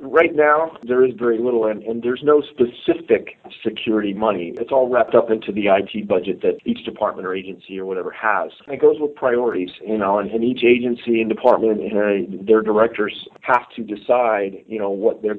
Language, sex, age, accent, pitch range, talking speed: English, male, 40-59, American, 105-125 Hz, 205 wpm